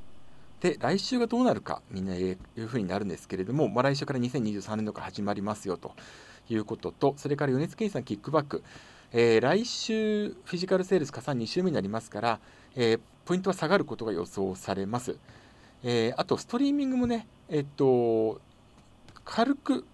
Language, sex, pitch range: Japanese, male, 110-175 Hz